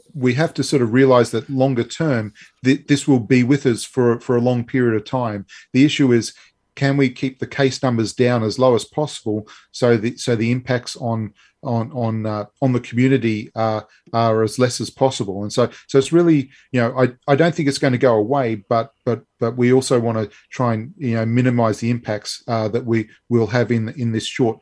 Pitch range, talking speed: 115-135 Hz, 230 wpm